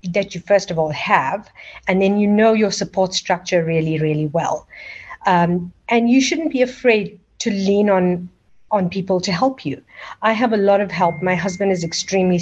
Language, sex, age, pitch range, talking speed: English, female, 50-69, 175-200 Hz, 195 wpm